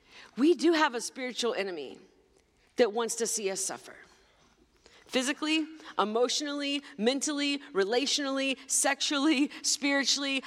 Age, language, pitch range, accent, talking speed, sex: 40-59, English, 230-280 Hz, American, 105 wpm, female